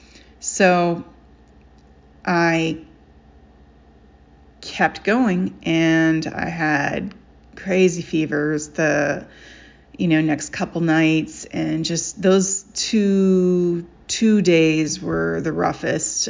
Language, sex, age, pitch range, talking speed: English, female, 30-49, 160-190 Hz, 90 wpm